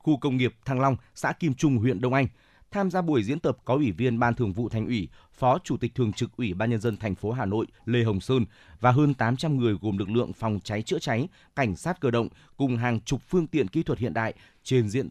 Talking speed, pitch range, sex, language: 260 wpm, 115-135 Hz, male, Vietnamese